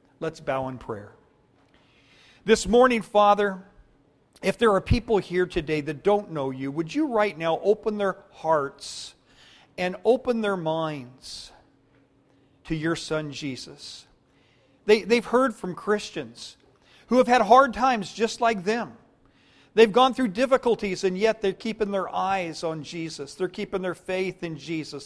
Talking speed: 150 wpm